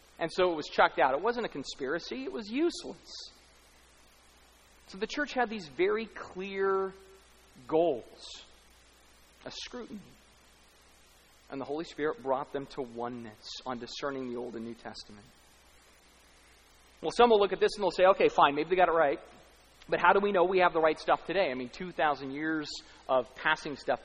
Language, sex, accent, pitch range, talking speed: English, male, American, 145-225 Hz, 180 wpm